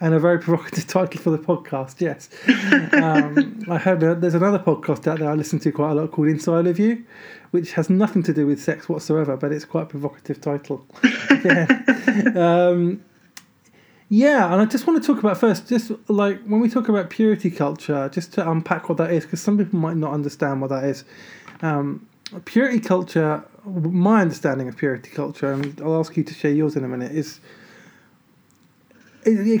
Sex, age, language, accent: male, 20-39, English, British